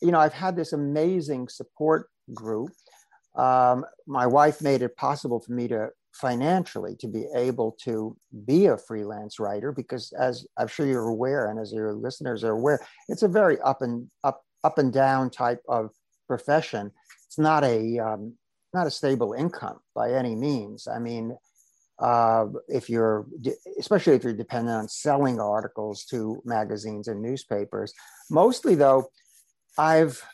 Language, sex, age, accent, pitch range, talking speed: English, male, 50-69, American, 115-145 Hz, 160 wpm